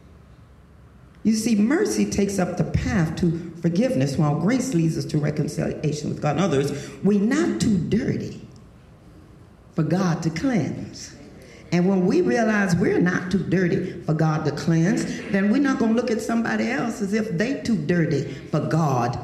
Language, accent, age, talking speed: English, American, 40-59, 170 wpm